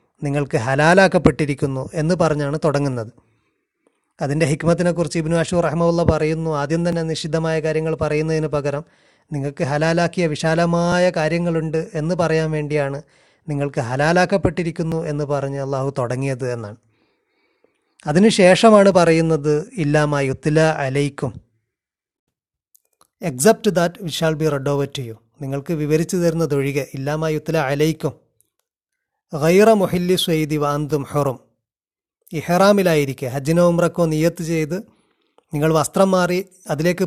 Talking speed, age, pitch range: 100 wpm, 30-49, 145-175 Hz